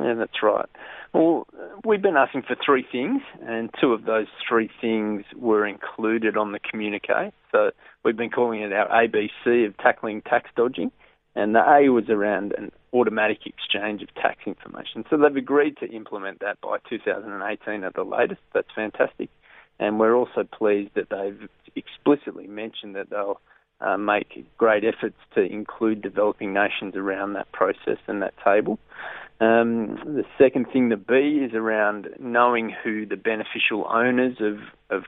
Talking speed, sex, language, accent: 165 wpm, male, English, Australian